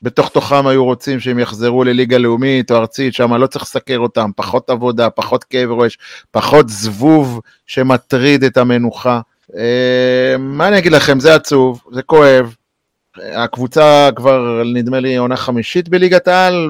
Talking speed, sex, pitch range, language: 145 wpm, male, 125-160 Hz, Hebrew